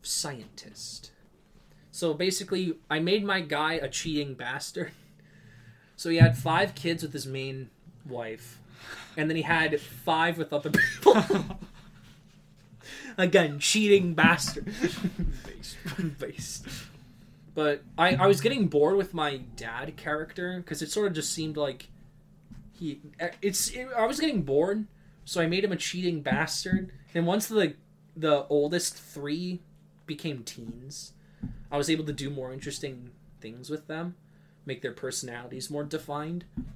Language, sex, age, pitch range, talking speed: English, male, 20-39, 140-170 Hz, 140 wpm